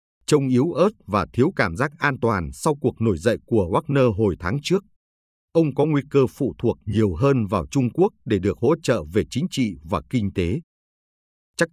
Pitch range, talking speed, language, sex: 95-145 Hz, 205 wpm, Vietnamese, male